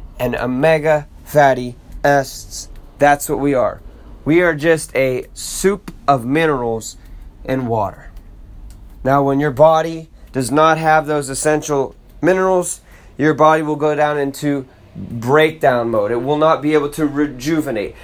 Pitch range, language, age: 130-160 Hz, English, 20-39